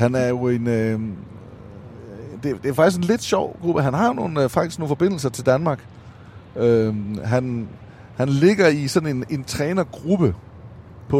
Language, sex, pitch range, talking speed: Danish, male, 110-145 Hz, 170 wpm